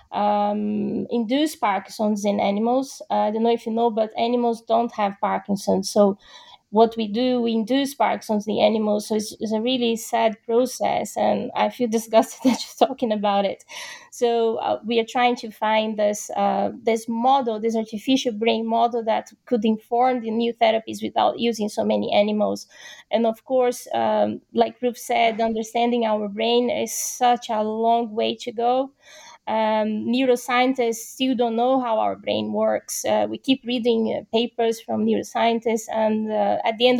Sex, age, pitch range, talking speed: female, 20-39, 215-245 Hz, 175 wpm